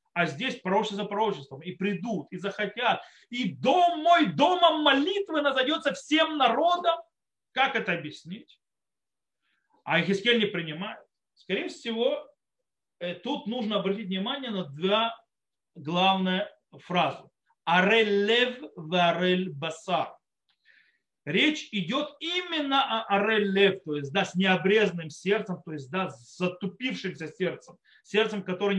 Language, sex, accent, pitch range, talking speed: Russian, male, native, 180-260 Hz, 120 wpm